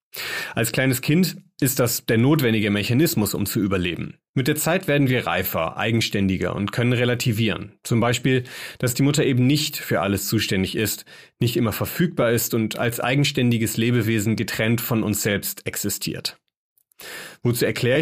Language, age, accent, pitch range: German, 30-49, German, 110-140 Hz